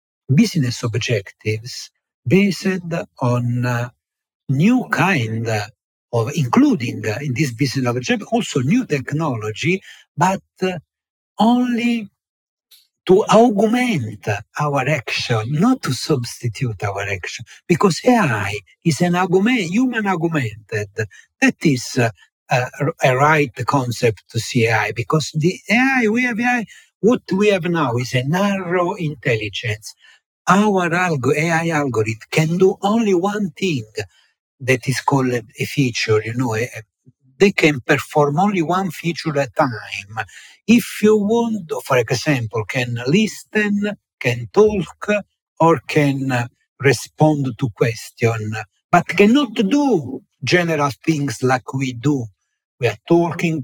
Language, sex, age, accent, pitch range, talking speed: English, male, 60-79, Italian, 120-190 Hz, 120 wpm